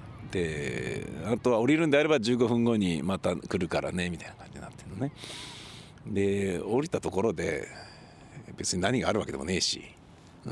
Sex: male